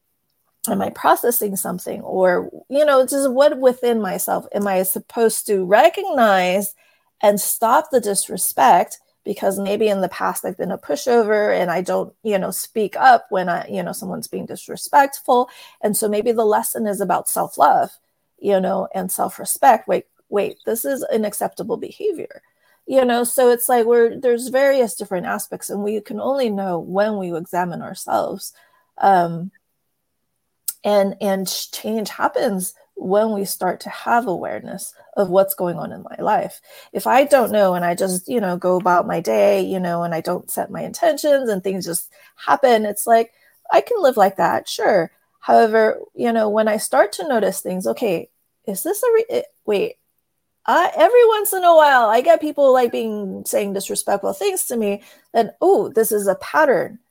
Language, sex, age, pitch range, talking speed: English, female, 30-49, 195-265 Hz, 180 wpm